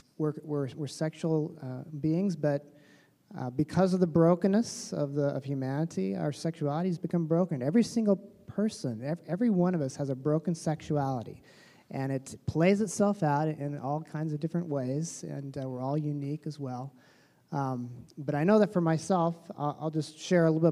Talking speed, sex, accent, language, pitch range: 185 wpm, male, American, English, 140-175 Hz